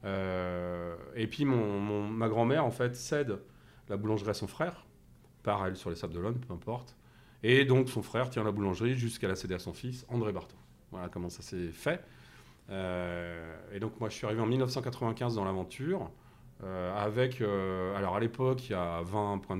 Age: 30-49